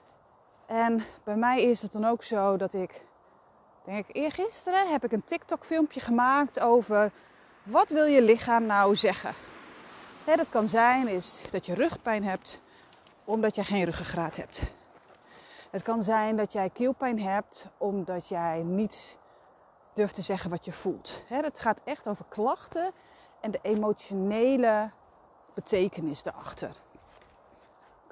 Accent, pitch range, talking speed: Dutch, 185-250 Hz, 140 wpm